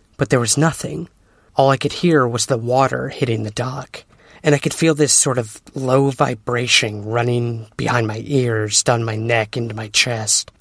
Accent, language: American, English